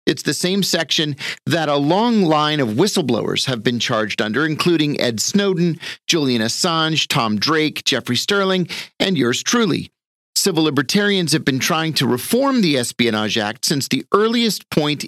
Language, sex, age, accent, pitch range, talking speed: English, male, 40-59, American, 135-185 Hz, 160 wpm